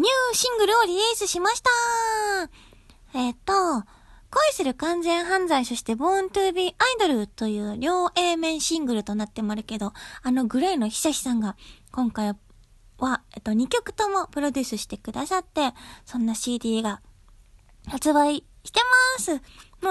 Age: 20-39